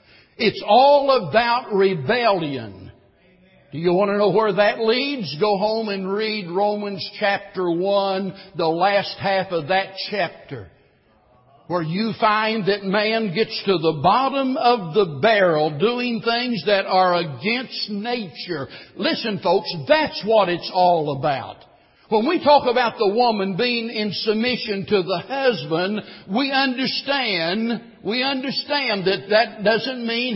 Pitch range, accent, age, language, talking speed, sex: 185-235 Hz, American, 60-79, English, 140 wpm, male